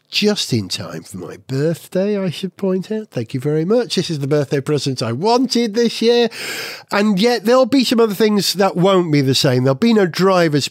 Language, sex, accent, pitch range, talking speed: English, male, British, 150-195 Hz, 220 wpm